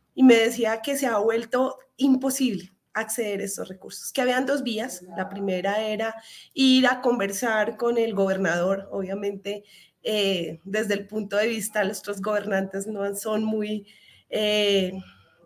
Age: 20-39